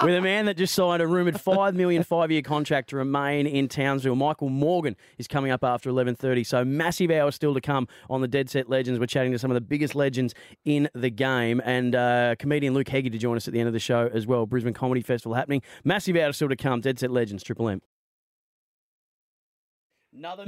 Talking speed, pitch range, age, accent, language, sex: 220 wpm, 120-145 Hz, 30-49, Australian, English, male